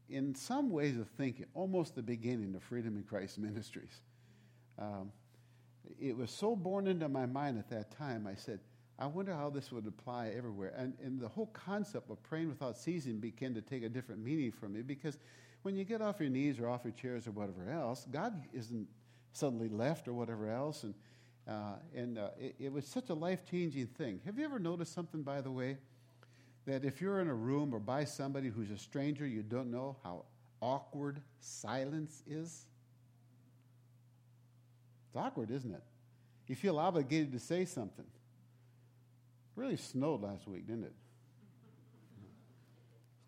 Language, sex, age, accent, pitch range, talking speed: English, male, 50-69, American, 120-145 Hz, 175 wpm